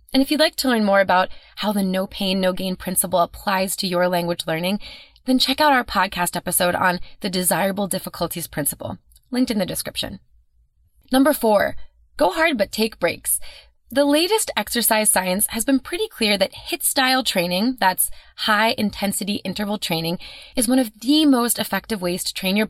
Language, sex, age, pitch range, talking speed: English, female, 20-39, 185-250 Hz, 180 wpm